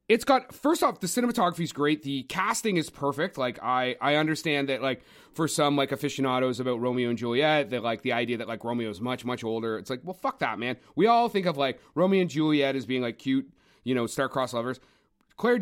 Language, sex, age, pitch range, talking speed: English, male, 30-49, 135-205 Hz, 230 wpm